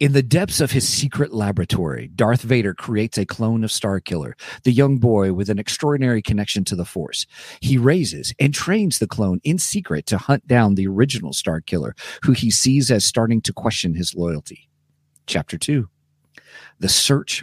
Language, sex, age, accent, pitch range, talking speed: English, male, 40-59, American, 105-145 Hz, 175 wpm